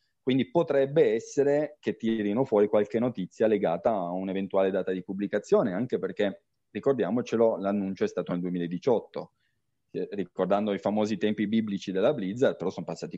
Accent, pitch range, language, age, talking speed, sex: native, 90-115 Hz, Italian, 30-49, 150 wpm, male